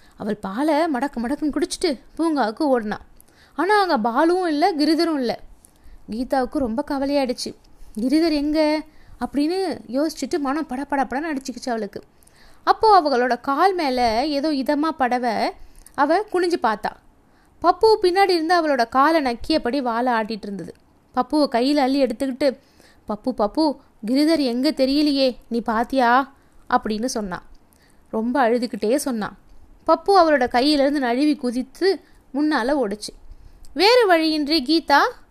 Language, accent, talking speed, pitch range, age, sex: Tamil, native, 115 wpm, 245-320 Hz, 20-39, female